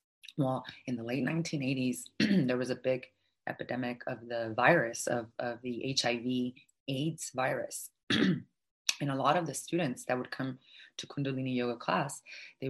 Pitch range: 120-140 Hz